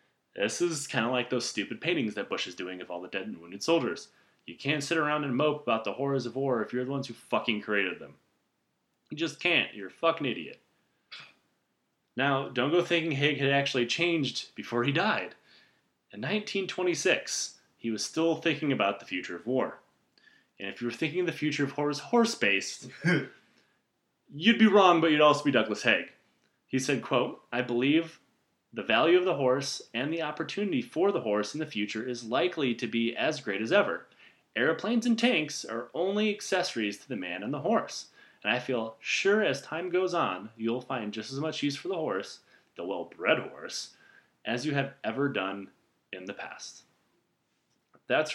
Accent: American